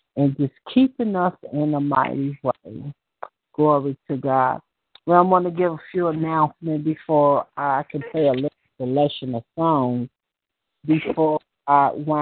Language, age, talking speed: English, 50-69, 140 wpm